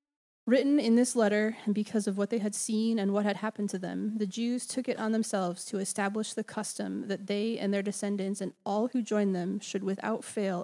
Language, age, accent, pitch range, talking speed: English, 20-39, American, 200-225 Hz, 225 wpm